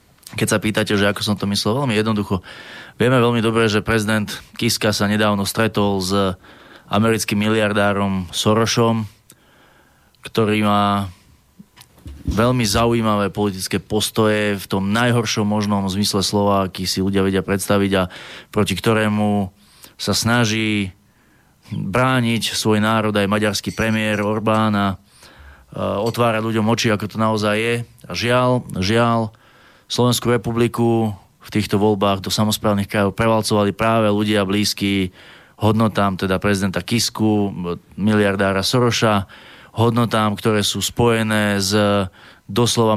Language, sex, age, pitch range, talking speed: Slovak, male, 20-39, 100-115 Hz, 120 wpm